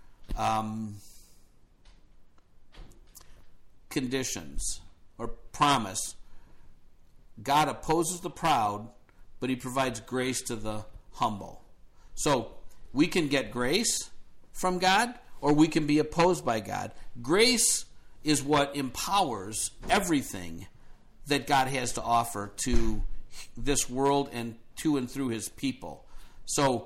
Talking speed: 110 wpm